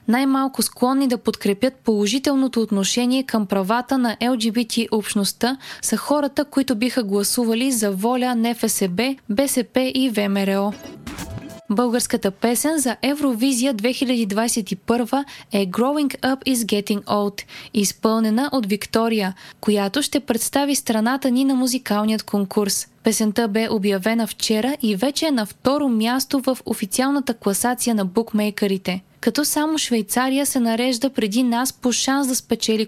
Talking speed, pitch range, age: 130 wpm, 215-260 Hz, 20-39